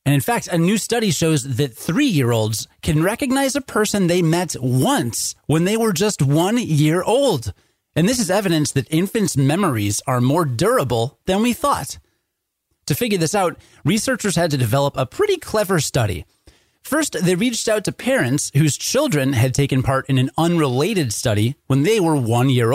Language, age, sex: English, 30-49, male